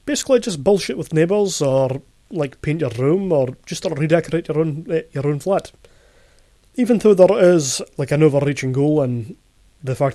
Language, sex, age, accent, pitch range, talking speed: English, male, 30-49, British, 140-175 Hz, 185 wpm